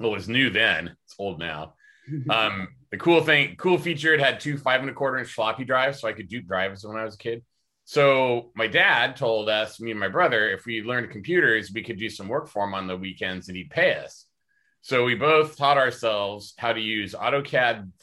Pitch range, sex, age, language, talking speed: 95-130 Hz, male, 30-49, English, 235 wpm